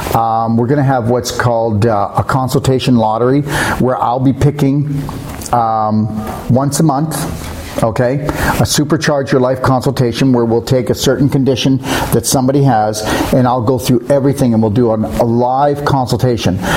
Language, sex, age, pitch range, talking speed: English, male, 50-69, 115-140 Hz, 160 wpm